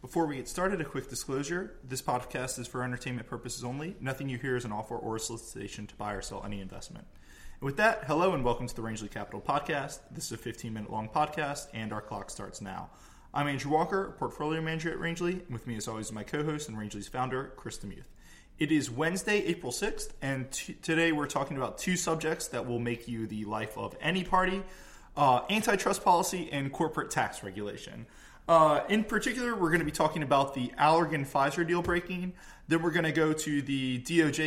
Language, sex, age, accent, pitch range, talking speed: English, male, 20-39, American, 125-165 Hz, 205 wpm